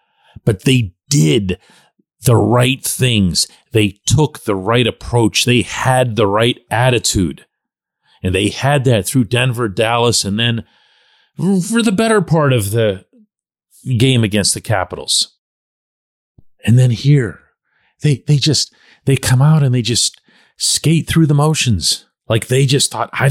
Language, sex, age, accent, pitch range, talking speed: English, male, 40-59, American, 100-145 Hz, 145 wpm